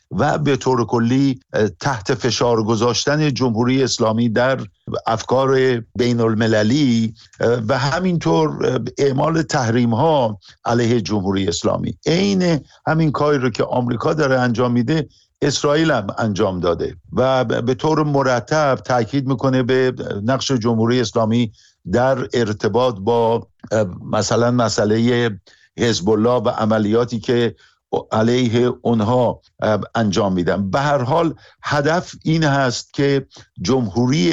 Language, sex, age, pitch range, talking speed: Persian, male, 50-69, 110-135 Hz, 115 wpm